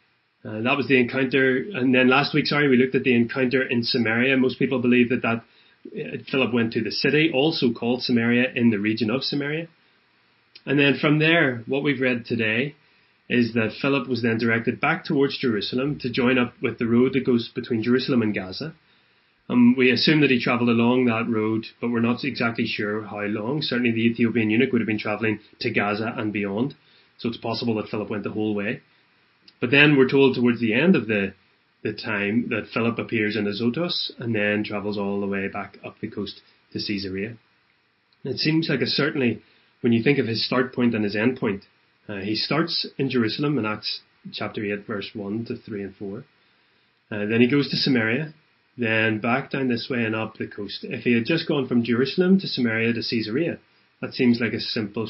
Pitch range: 110-135 Hz